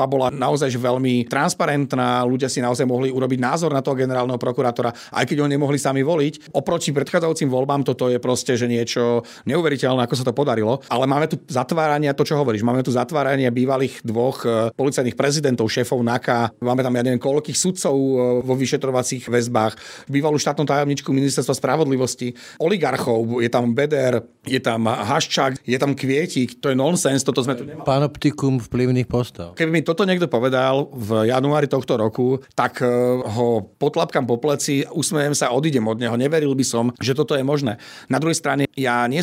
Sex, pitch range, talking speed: male, 120-145 Hz, 160 wpm